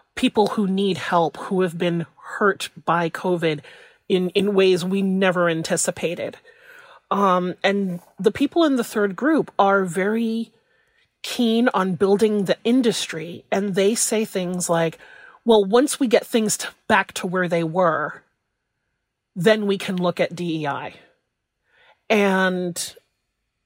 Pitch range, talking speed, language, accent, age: 175-220 Hz, 135 wpm, English, American, 30-49